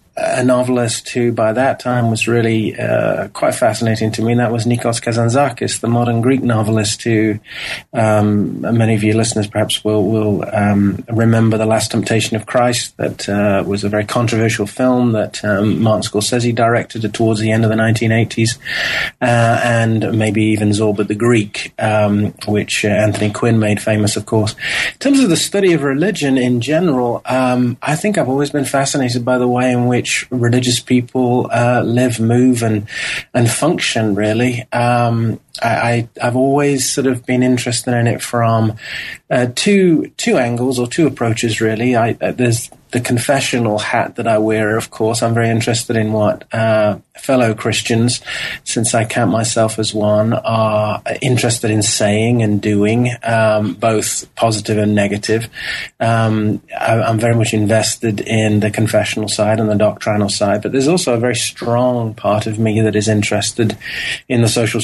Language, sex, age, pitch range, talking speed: English, male, 30-49, 110-120 Hz, 170 wpm